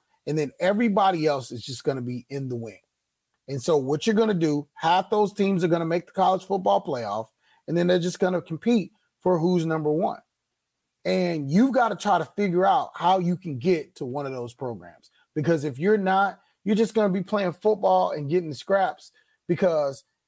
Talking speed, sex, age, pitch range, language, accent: 220 wpm, male, 30-49, 140-190 Hz, English, American